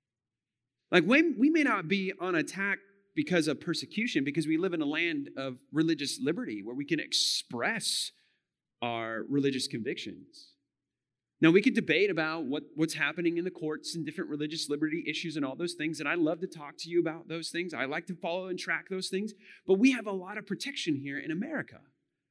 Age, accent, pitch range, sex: 30-49, American, 140-205 Hz, male